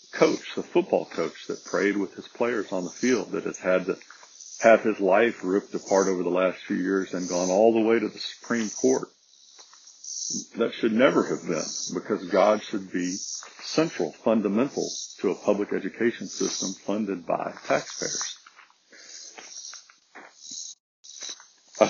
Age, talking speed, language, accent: 50-69, 150 wpm, English, American